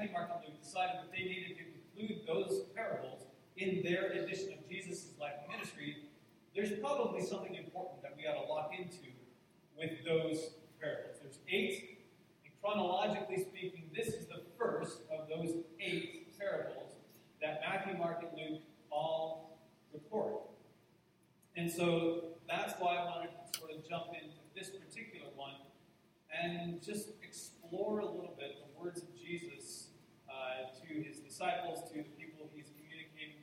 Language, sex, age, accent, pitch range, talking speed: English, male, 40-59, American, 155-185 Hz, 150 wpm